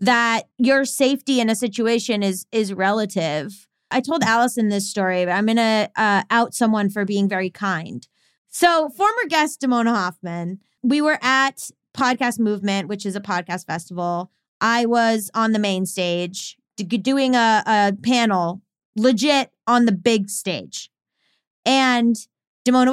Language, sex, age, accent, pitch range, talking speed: English, female, 20-39, American, 205-255 Hz, 150 wpm